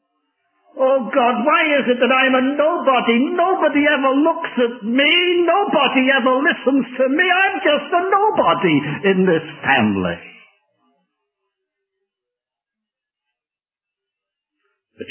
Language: English